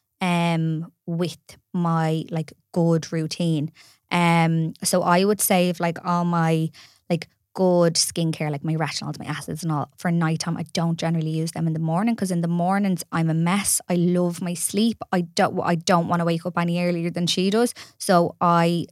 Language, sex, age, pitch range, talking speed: English, female, 20-39, 165-185 Hz, 190 wpm